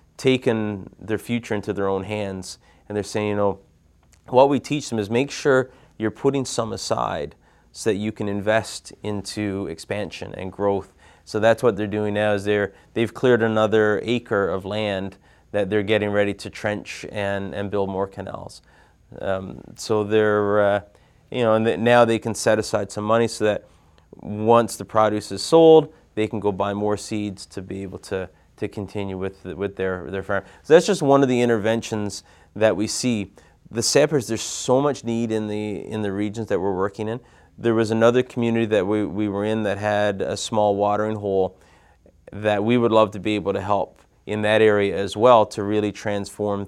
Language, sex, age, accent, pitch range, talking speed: English, male, 30-49, American, 100-115 Hz, 195 wpm